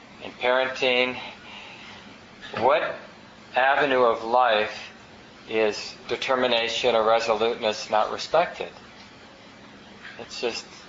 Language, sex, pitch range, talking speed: English, male, 115-130 Hz, 75 wpm